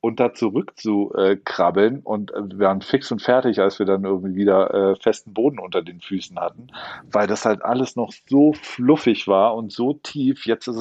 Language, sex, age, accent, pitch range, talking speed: German, male, 40-59, German, 100-115 Hz, 205 wpm